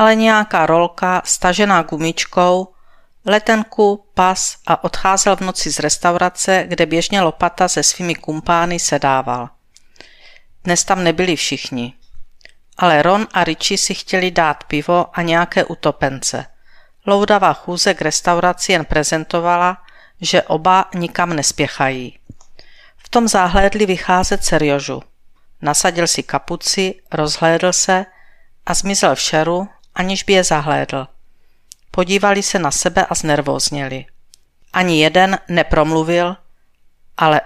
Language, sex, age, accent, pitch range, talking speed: Czech, female, 50-69, native, 155-190 Hz, 115 wpm